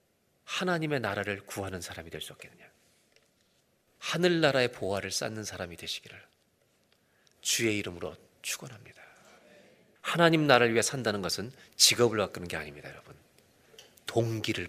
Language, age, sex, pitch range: Korean, 40-59, male, 100-140 Hz